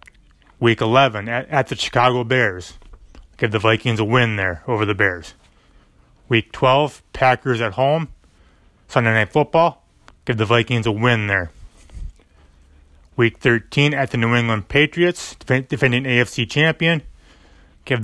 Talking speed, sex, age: 135 wpm, male, 30-49